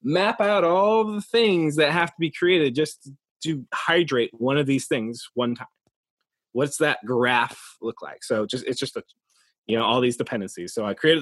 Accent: American